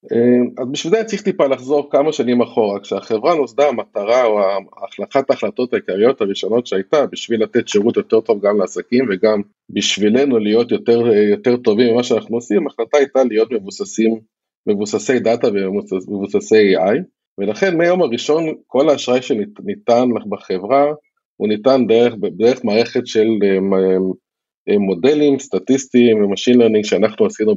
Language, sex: Hebrew, male